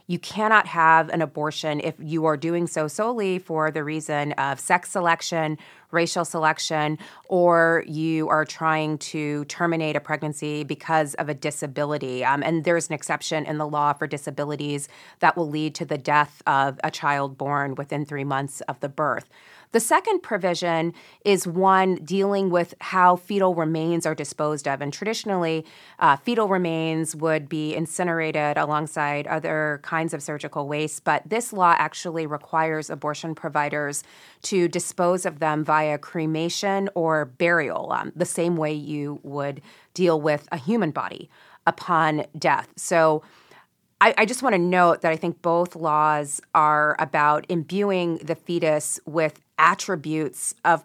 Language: English